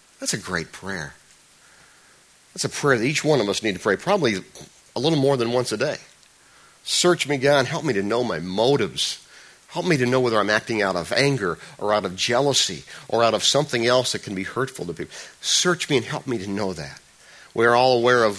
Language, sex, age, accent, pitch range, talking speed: English, male, 50-69, American, 115-170 Hz, 230 wpm